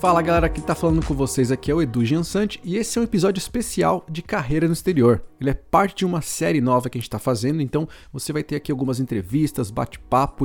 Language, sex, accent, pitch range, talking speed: Portuguese, male, Brazilian, 120-165 Hz, 240 wpm